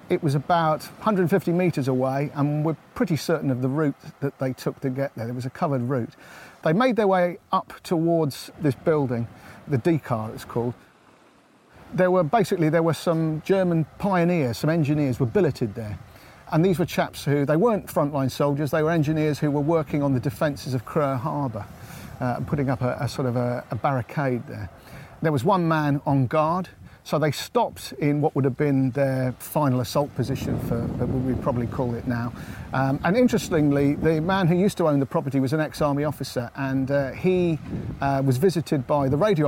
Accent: British